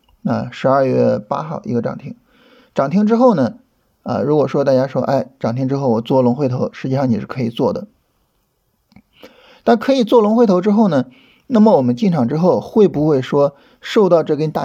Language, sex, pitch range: Chinese, male, 140-230 Hz